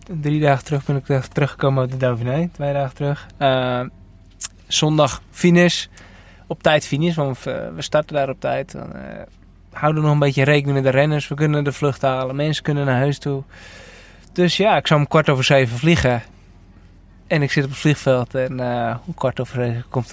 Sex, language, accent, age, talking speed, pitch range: male, Dutch, Dutch, 20-39, 195 wpm, 125-150 Hz